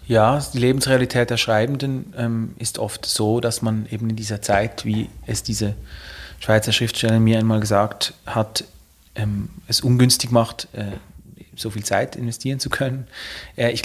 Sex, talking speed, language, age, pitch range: male, 145 wpm, German, 30-49, 110-125 Hz